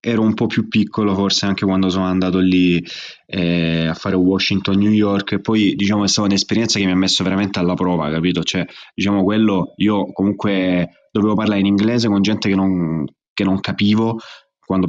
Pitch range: 95-105 Hz